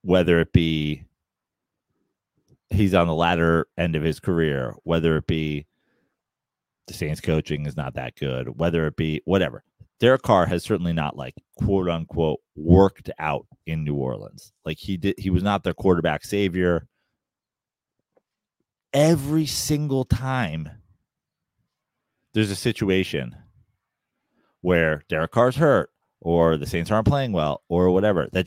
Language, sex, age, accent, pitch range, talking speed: English, male, 30-49, American, 85-130 Hz, 140 wpm